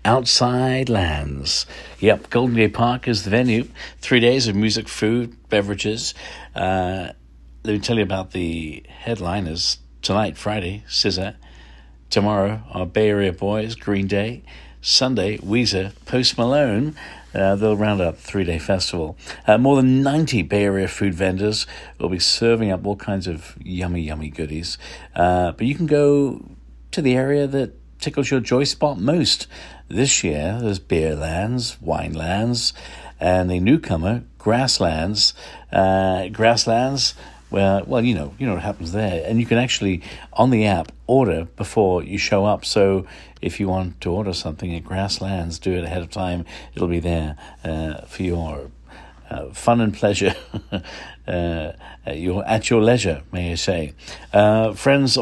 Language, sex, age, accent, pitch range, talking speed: English, male, 60-79, British, 85-115 Hz, 160 wpm